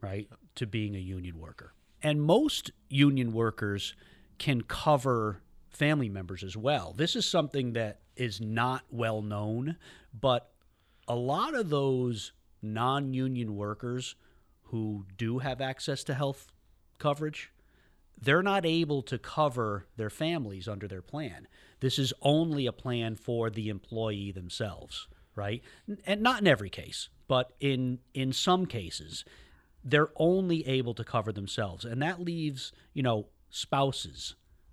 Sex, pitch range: male, 100-130 Hz